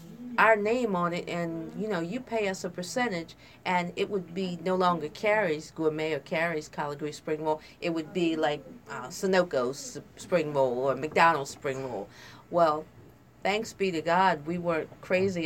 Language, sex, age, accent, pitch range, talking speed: English, female, 50-69, American, 155-180 Hz, 175 wpm